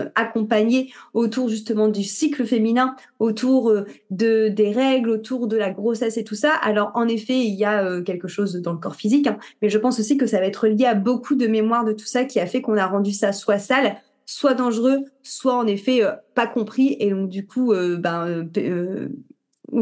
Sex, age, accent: female, 30-49, French